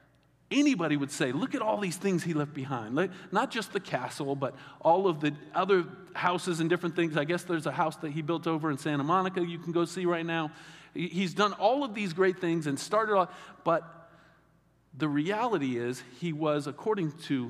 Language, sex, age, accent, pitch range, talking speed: English, male, 40-59, American, 140-180 Hz, 205 wpm